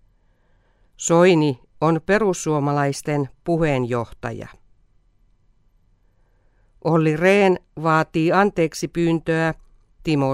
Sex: female